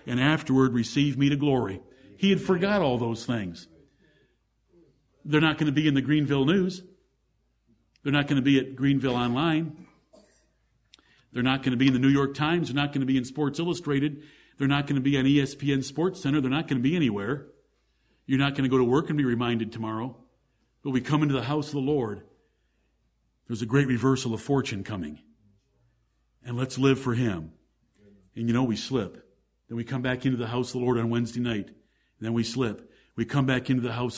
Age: 50-69